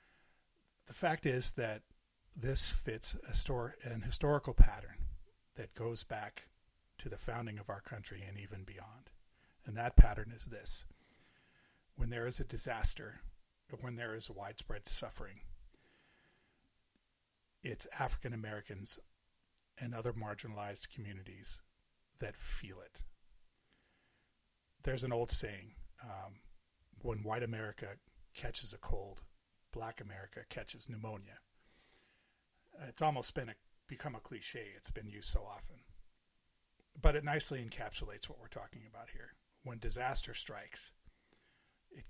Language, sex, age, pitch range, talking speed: English, male, 40-59, 100-125 Hz, 125 wpm